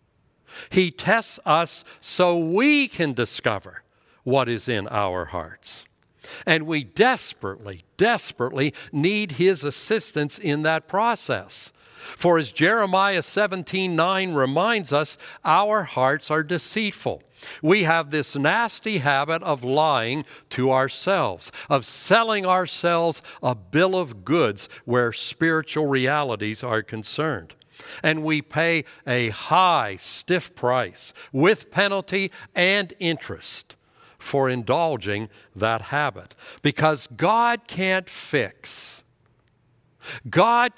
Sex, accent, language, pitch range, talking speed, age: male, American, English, 125-185 Hz, 110 wpm, 60-79